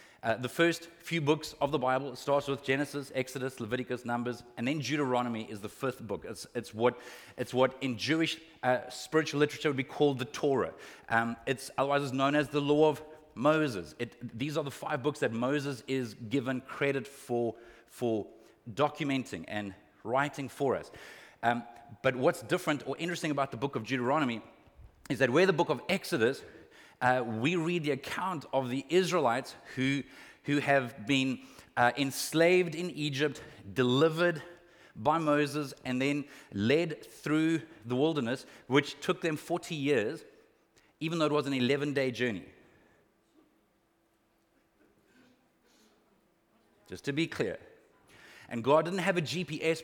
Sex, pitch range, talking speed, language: male, 125-155 Hz, 155 wpm, English